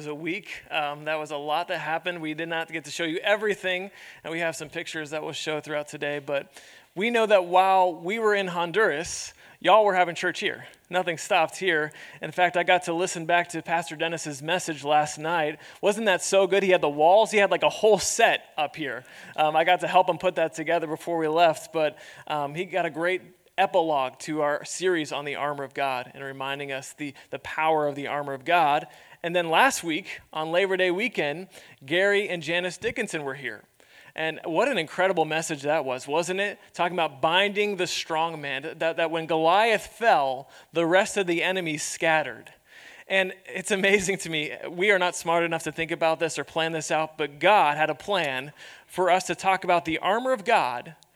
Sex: male